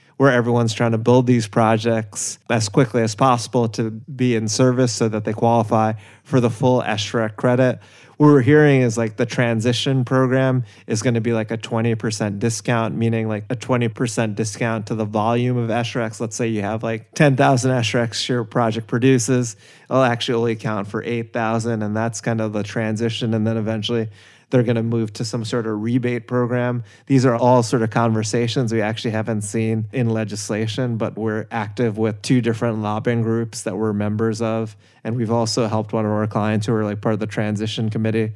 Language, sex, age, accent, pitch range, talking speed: English, male, 30-49, American, 110-125 Hz, 195 wpm